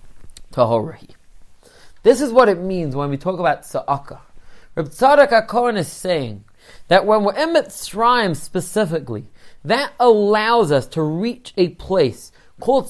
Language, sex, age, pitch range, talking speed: English, male, 30-49, 165-240 Hz, 130 wpm